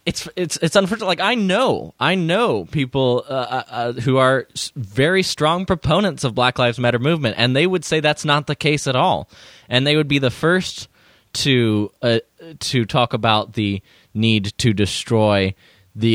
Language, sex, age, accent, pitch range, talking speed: English, male, 20-39, American, 105-140 Hz, 180 wpm